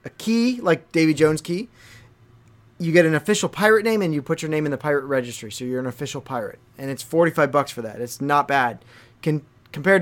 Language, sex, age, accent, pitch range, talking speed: English, male, 30-49, American, 120-175 Hz, 215 wpm